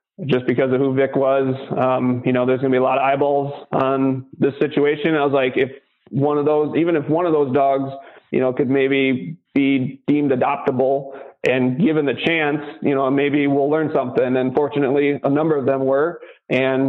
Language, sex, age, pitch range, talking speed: English, male, 20-39, 130-150 Hz, 205 wpm